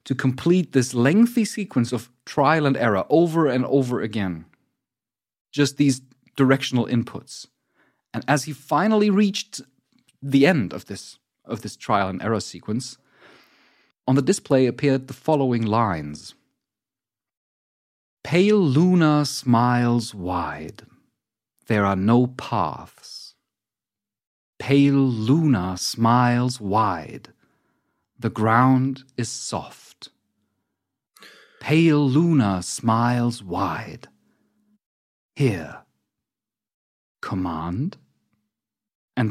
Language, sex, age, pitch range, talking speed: English, male, 40-59, 105-140 Hz, 95 wpm